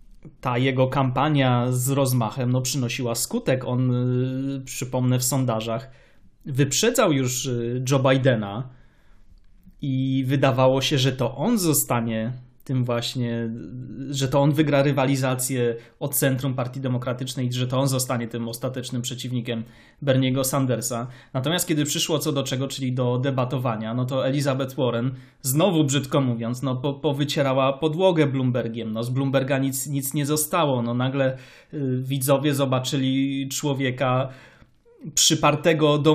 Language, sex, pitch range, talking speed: Polish, male, 125-140 Hz, 130 wpm